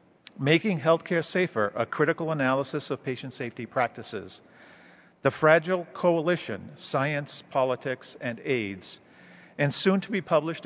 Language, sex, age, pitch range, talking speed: English, male, 50-69, 125-160 Hz, 125 wpm